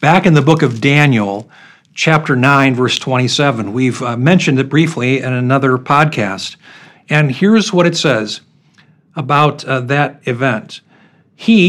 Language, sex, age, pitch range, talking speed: English, male, 50-69, 145-180 Hz, 145 wpm